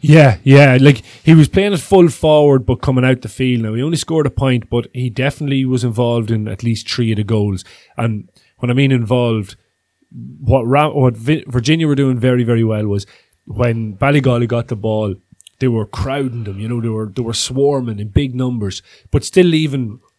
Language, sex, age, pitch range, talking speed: English, male, 30-49, 110-130 Hz, 200 wpm